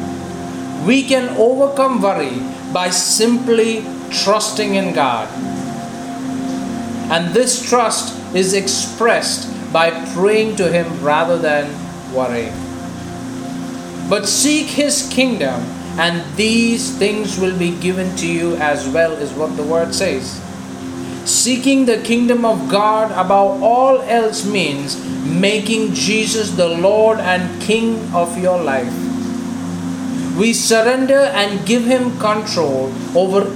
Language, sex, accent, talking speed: English, male, Indian, 115 wpm